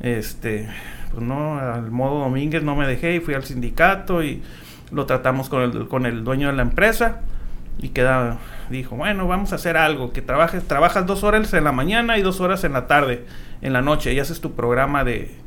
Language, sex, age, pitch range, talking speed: Spanish, male, 40-59, 120-175 Hz, 205 wpm